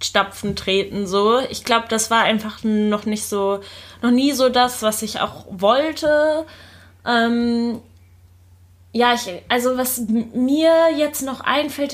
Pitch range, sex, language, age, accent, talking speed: 200-250 Hz, female, German, 20-39, German, 145 wpm